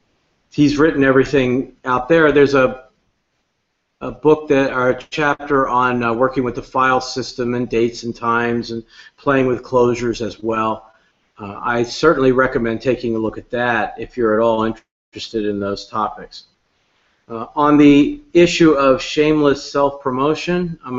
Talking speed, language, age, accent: 155 wpm, English, 50-69, American